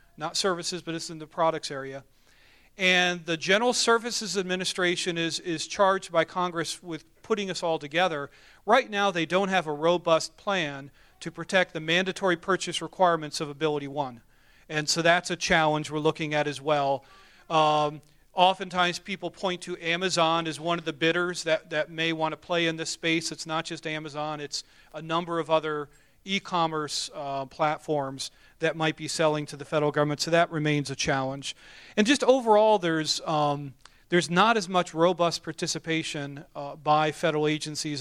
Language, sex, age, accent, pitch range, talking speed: English, male, 40-59, American, 150-175 Hz, 175 wpm